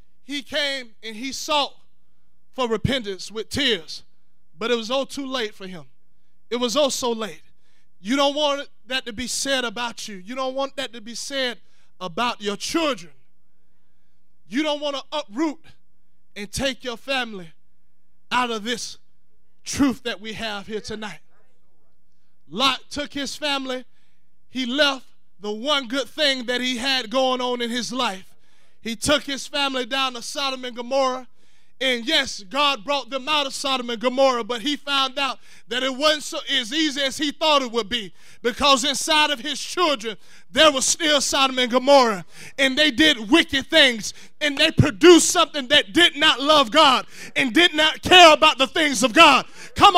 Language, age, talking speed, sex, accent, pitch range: English, 20-39, 175 wpm, male, American, 235-300 Hz